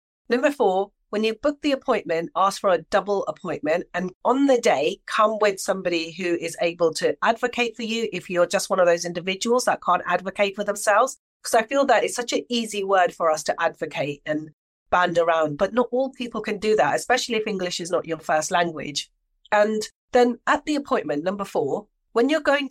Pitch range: 170-240 Hz